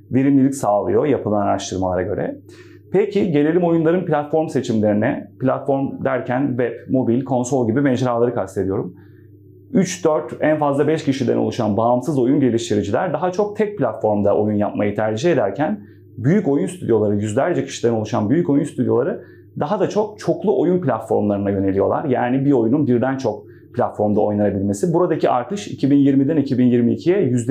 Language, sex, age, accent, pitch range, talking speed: Turkish, male, 30-49, native, 110-150 Hz, 135 wpm